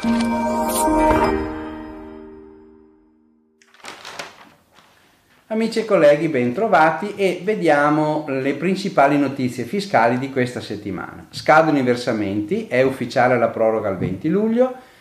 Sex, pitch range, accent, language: male, 110-160 Hz, native, Italian